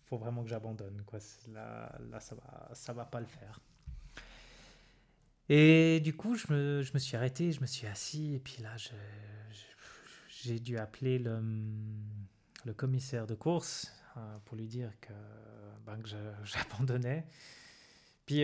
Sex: male